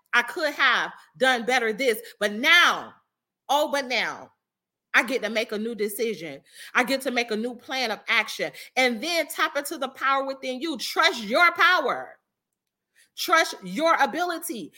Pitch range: 250-350 Hz